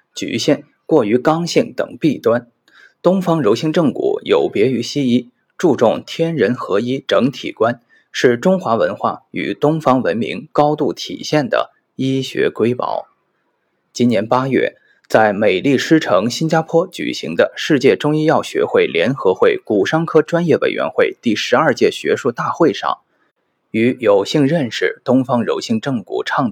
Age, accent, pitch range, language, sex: 20-39, native, 135-190 Hz, Chinese, male